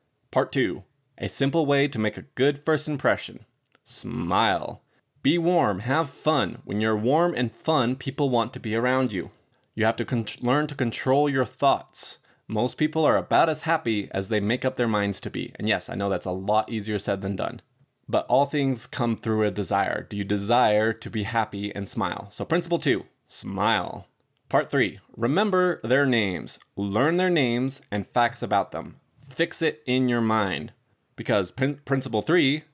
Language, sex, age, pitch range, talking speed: English, male, 20-39, 105-140 Hz, 180 wpm